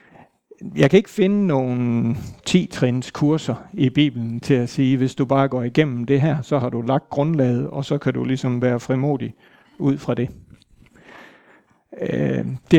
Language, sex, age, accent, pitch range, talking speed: Danish, male, 60-79, native, 125-150 Hz, 170 wpm